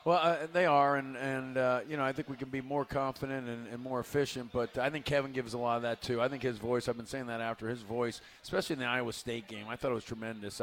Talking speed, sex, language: 295 wpm, male, English